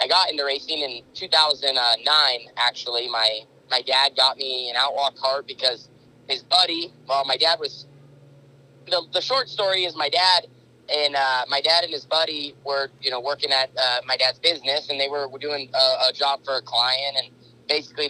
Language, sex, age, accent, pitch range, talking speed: English, male, 30-49, American, 120-145 Hz, 190 wpm